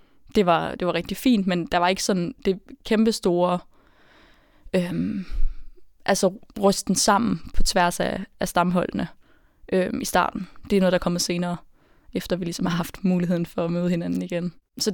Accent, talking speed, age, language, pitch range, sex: native, 175 wpm, 20-39, Danish, 170-205 Hz, female